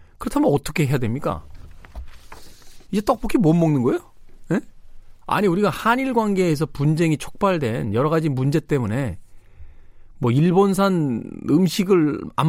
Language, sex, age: Korean, male, 40-59